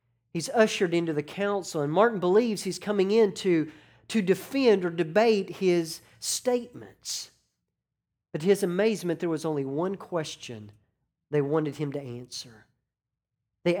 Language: English